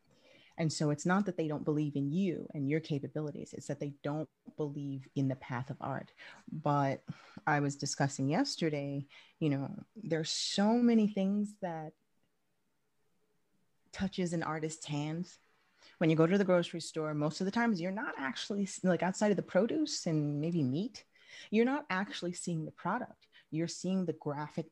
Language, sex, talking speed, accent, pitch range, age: English, female, 170 wpm, American, 150-190 Hz, 30-49